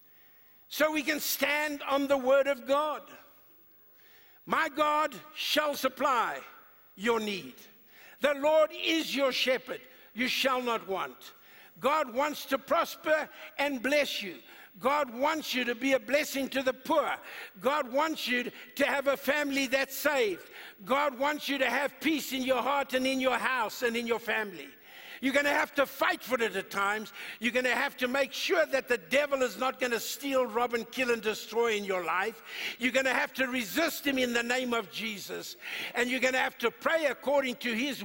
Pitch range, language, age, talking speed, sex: 235-290 Hz, English, 60-79, 190 wpm, male